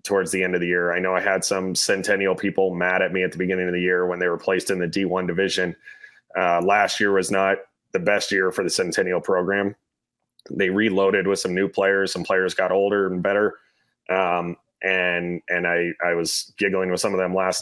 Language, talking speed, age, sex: English, 225 wpm, 30-49, male